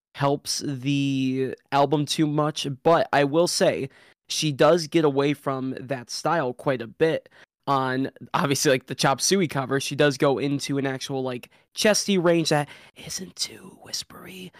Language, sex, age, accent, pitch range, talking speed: English, male, 20-39, American, 130-150 Hz, 160 wpm